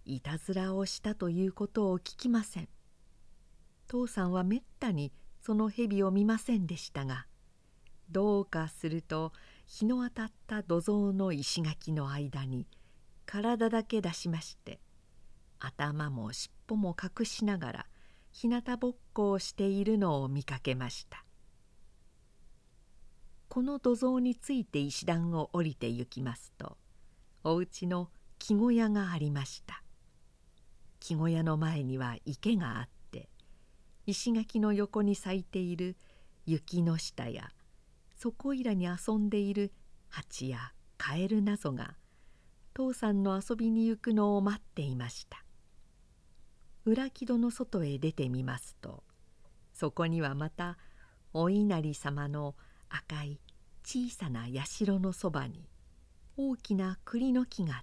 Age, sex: 50-69, female